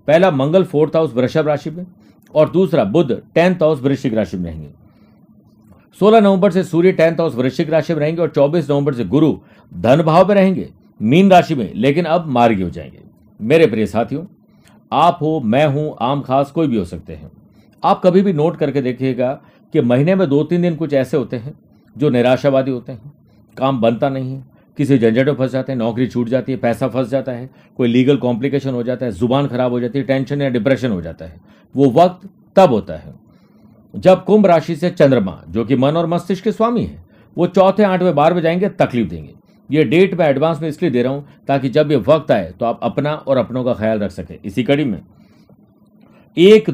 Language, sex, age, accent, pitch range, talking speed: Hindi, male, 50-69, native, 125-170 Hz, 210 wpm